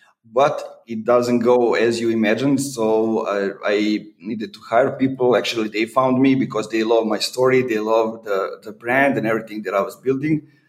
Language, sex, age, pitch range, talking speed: English, male, 30-49, 115-130 Hz, 190 wpm